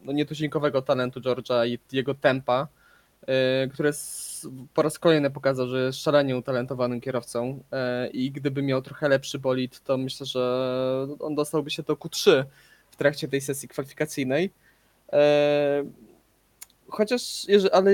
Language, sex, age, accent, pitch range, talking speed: Polish, male, 20-39, native, 130-155 Hz, 120 wpm